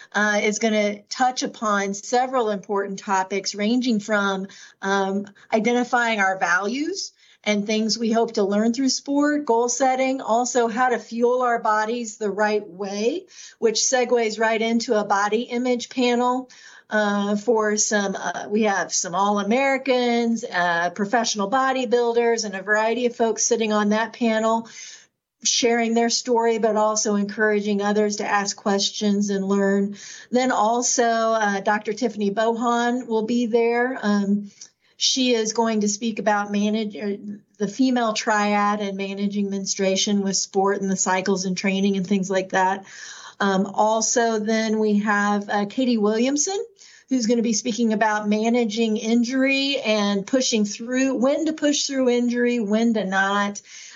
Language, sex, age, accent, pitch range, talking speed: English, female, 40-59, American, 205-240 Hz, 150 wpm